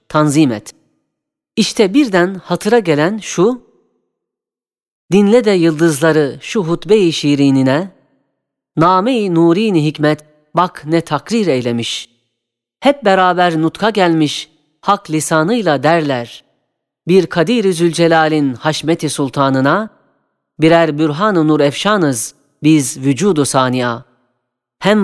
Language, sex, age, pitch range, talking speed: Turkish, female, 40-59, 145-195 Hz, 95 wpm